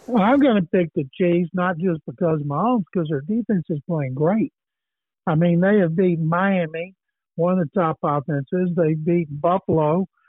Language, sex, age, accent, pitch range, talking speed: English, male, 60-79, American, 165-205 Hz, 200 wpm